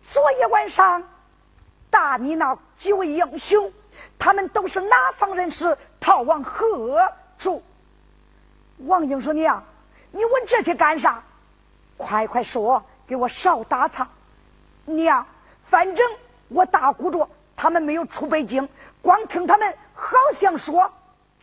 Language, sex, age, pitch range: Chinese, female, 50-69, 300-395 Hz